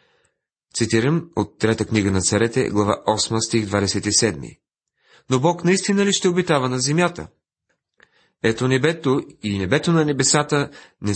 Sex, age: male, 40-59